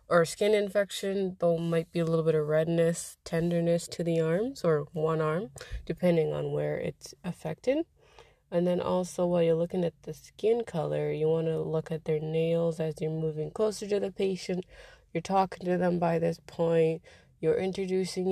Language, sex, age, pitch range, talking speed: English, female, 20-39, 160-185 Hz, 185 wpm